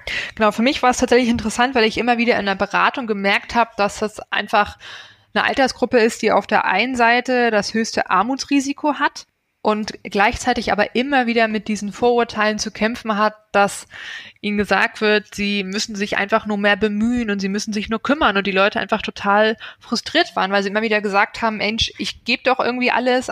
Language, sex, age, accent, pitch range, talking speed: German, female, 20-39, German, 200-235 Hz, 200 wpm